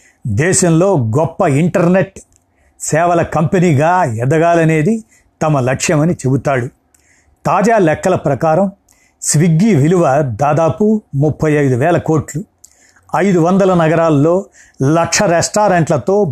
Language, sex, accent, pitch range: Telugu, male, native, 145-180 Hz